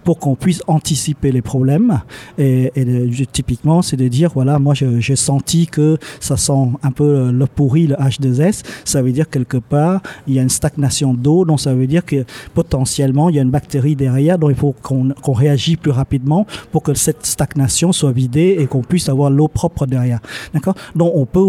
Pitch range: 135-160 Hz